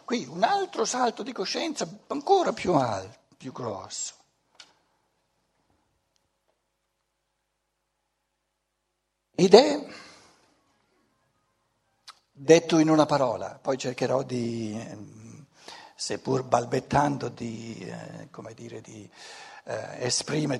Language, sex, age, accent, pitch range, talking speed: Italian, male, 60-79, native, 145-195 Hz, 80 wpm